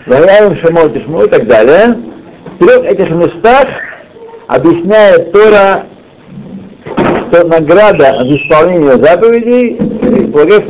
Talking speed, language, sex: 95 wpm, Russian, male